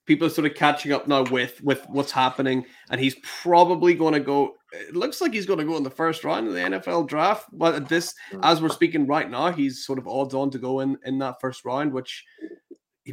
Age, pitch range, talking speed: 20-39, 125-160 Hz, 240 wpm